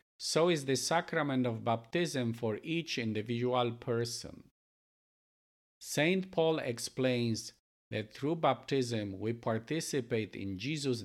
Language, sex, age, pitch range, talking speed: English, male, 50-69, 110-150 Hz, 110 wpm